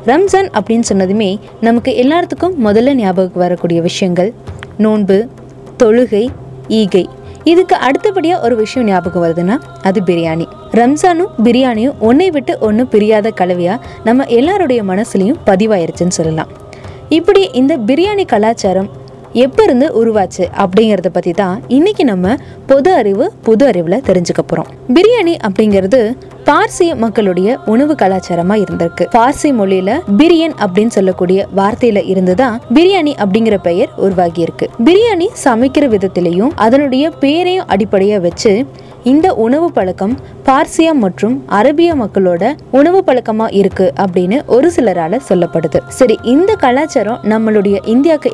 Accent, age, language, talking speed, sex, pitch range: native, 20-39, Tamil, 110 wpm, female, 190-275 Hz